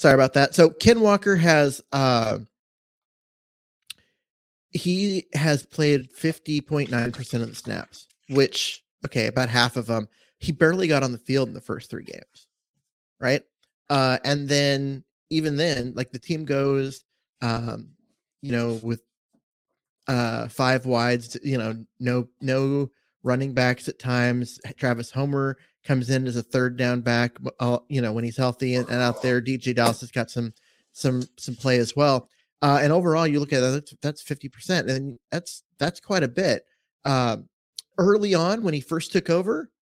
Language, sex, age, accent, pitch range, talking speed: English, male, 30-49, American, 120-145 Hz, 165 wpm